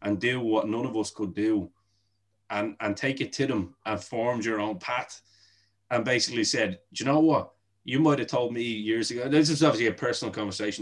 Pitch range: 100-135 Hz